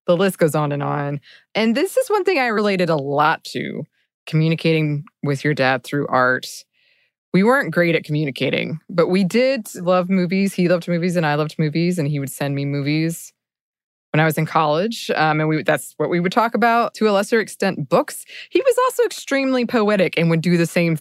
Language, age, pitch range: English, 20-39, 150-185 Hz